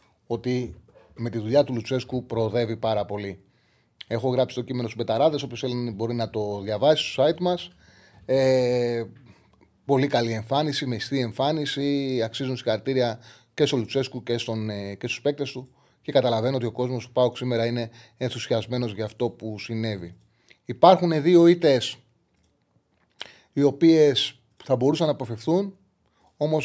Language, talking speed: Greek, 145 wpm